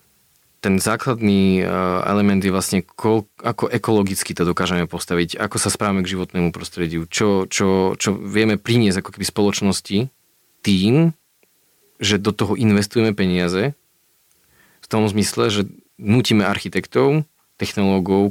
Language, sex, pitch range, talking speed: Slovak, male, 95-110 Hz, 120 wpm